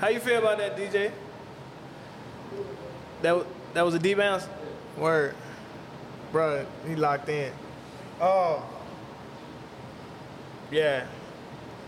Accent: American